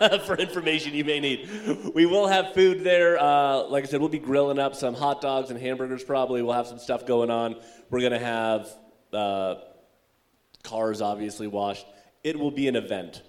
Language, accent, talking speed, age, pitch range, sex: English, American, 190 wpm, 30-49, 115-150 Hz, male